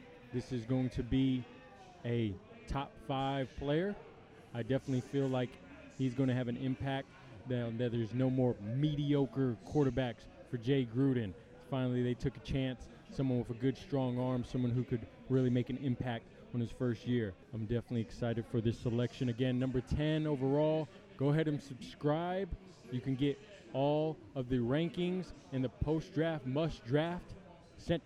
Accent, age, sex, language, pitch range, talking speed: American, 20-39, male, English, 125-150 Hz, 160 wpm